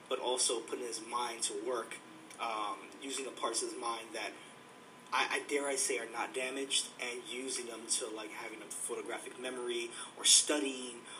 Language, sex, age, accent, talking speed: English, male, 20-39, American, 180 wpm